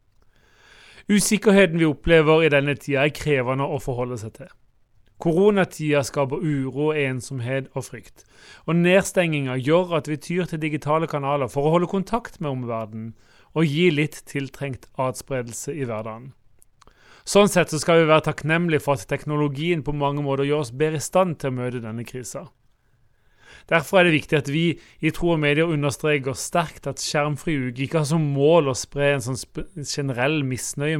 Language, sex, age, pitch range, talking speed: English, male, 30-49, 130-160 Hz, 155 wpm